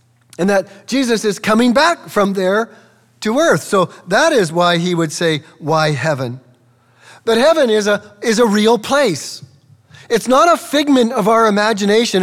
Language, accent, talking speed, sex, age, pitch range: English, American, 165 wpm, male, 40-59, 170-230 Hz